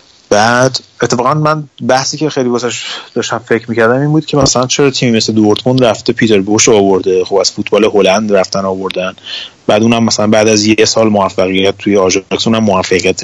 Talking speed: 175 wpm